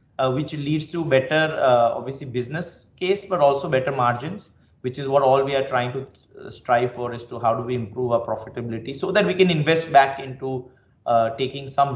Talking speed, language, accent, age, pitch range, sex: 205 wpm, English, Indian, 20-39, 115-140 Hz, male